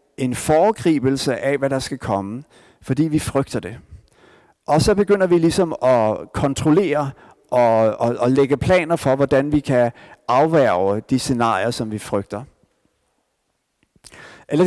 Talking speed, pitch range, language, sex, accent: 140 wpm, 130-175 Hz, Danish, male, native